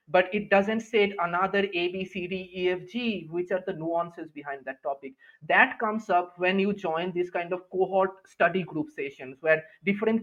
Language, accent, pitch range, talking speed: English, Indian, 170-215 Hz, 200 wpm